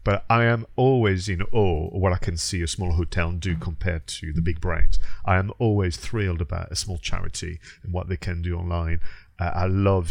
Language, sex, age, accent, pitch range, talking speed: English, male, 40-59, British, 85-105 Hz, 220 wpm